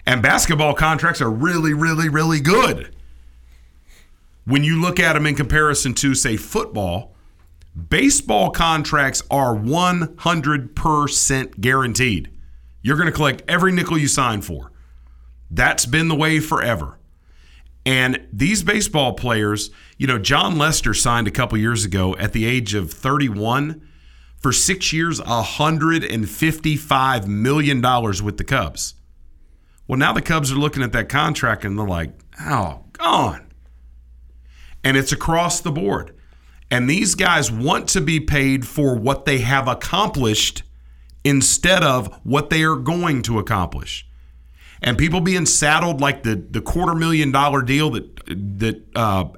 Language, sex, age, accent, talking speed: English, male, 40-59, American, 140 wpm